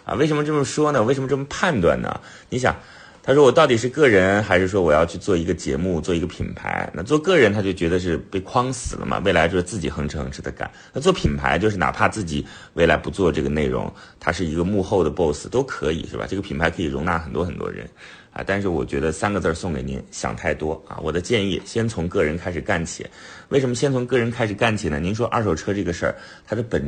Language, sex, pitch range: Chinese, male, 85-125 Hz